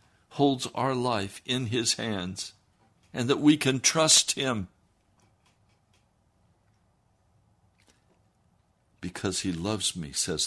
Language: English